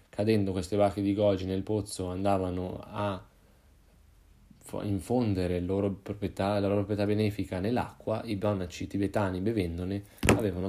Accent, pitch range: native, 95-105 Hz